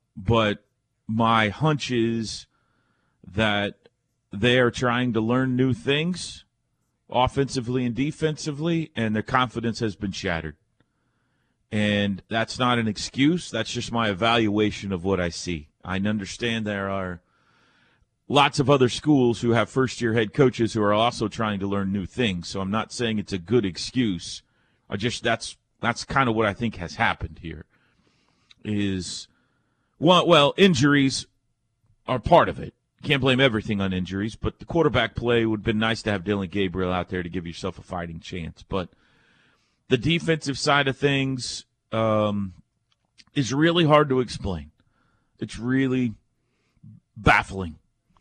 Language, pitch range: English, 100-125 Hz